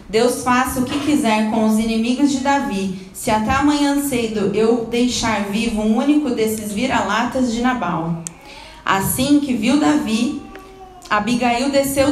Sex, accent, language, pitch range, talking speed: female, Brazilian, Portuguese, 210-265 Hz, 145 wpm